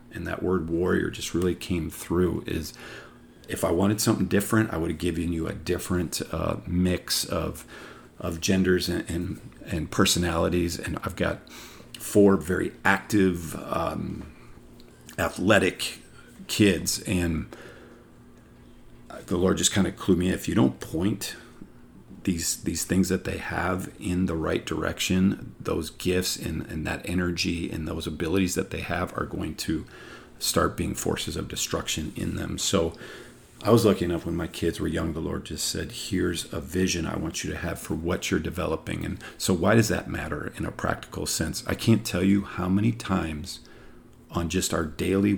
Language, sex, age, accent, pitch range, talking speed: English, male, 40-59, American, 85-95 Hz, 175 wpm